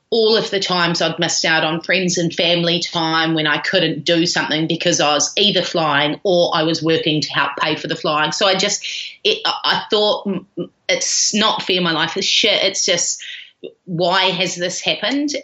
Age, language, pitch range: 30-49, English, 160-195 Hz